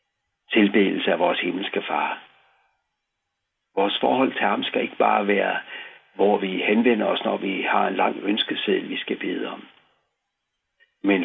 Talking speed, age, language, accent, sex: 150 wpm, 60-79, Danish, native, male